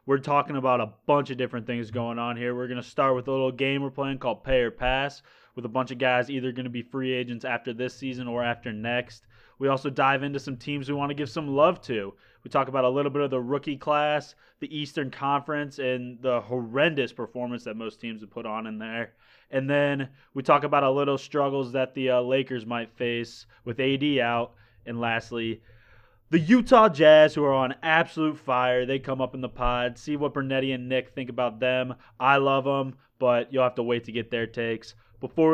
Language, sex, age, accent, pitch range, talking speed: English, male, 20-39, American, 125-140 Hz, 225 wpm